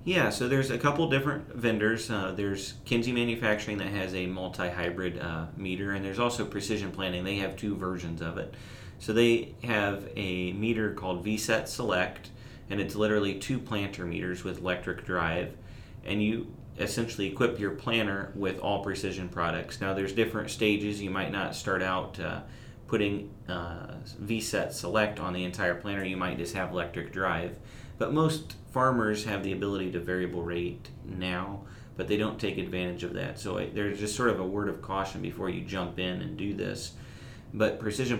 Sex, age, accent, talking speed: male, 30-49, American, 180 wpm